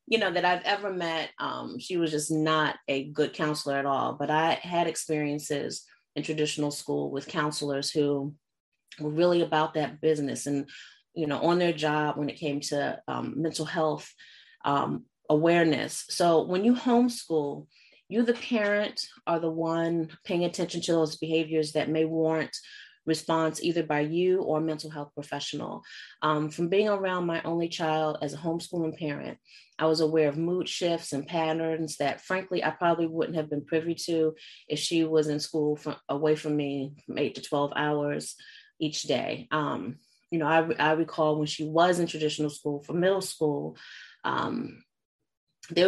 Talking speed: 170 wpm